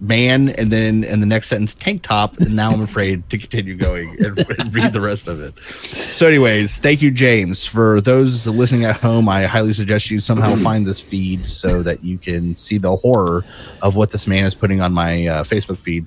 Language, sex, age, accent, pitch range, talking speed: English, male, 30-49, American, 90-115 Hz, 220 wpm